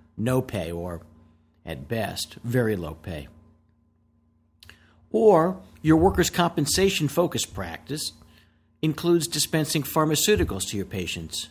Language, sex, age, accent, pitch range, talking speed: English, male, 50-69, American, 85-140 Hz, 100 wpm